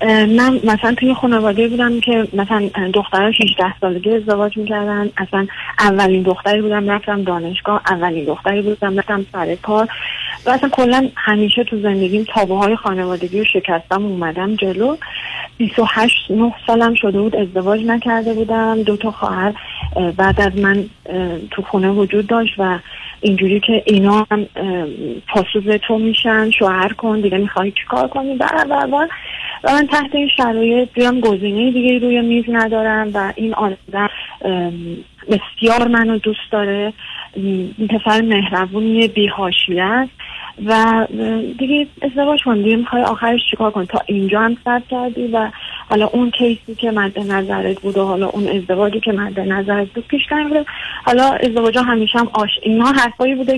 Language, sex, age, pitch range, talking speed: Persian, female, 40-59, 200-235 Hz, 150 wpm